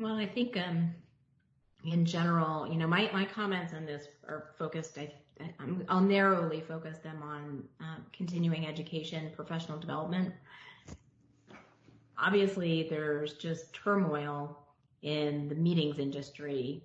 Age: 30-49